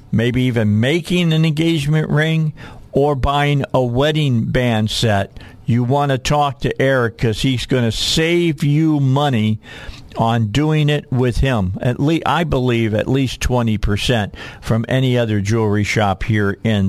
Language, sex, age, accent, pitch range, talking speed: English, male, 50-69, American, 100-130 Hz, 155 wpm